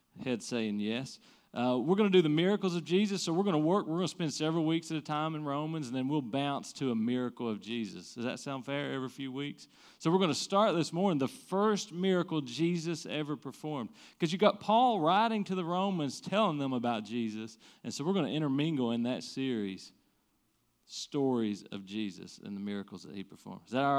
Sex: male